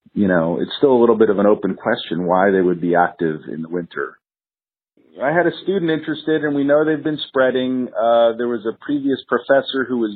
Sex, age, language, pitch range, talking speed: male, 40-59, English, 110-140 Hz, 225 wpm